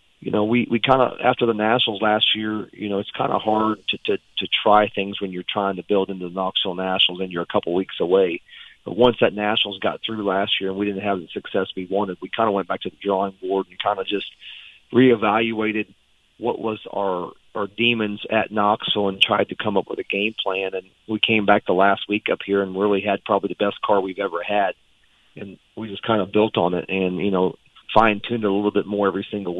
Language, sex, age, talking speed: English, male, 40-59, 245 wpm